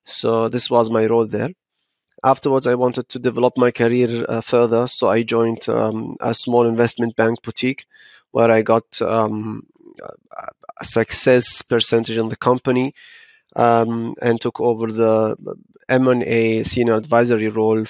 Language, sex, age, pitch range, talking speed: English, male, 30-49, 110-125 Hz, 145 wpm